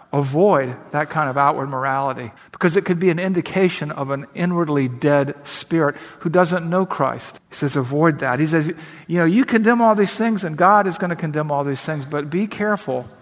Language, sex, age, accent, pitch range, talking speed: English, male, 50-69, American, 140-180 Hz, 210 wpm